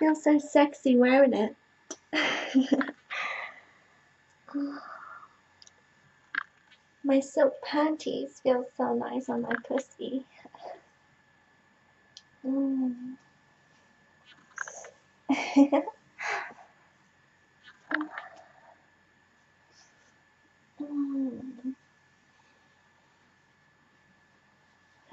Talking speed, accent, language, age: 40 wpm, American, English, 30-49